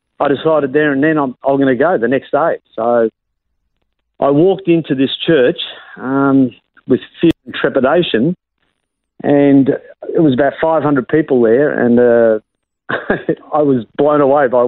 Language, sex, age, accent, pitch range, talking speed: English, male, 50-69, Australian, 120-140 Hz, 155 wpm